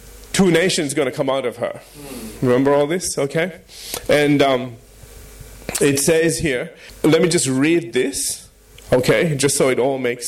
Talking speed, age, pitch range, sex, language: 165 wpm, 30-49, 130-160 Hz, male, English